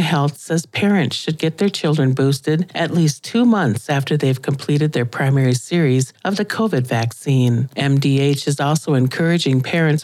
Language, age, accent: English, 50-69, American